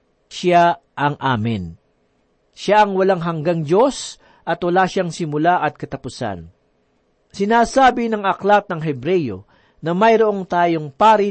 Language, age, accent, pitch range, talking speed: Filipino, 50-69, native, 155-205 Hz, 120 wpm